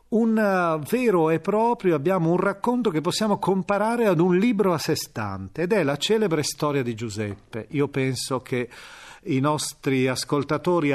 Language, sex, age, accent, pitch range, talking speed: Italian, male, 40-59, native, 120-160 Hz, 160 wpm